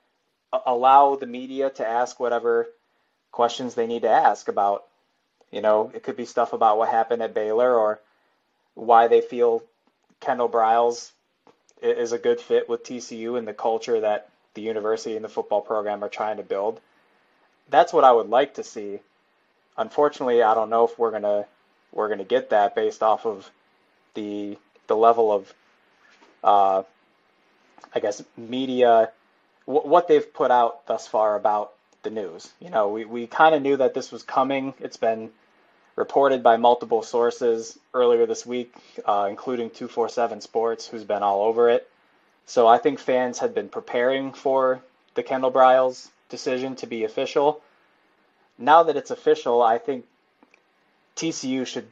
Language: English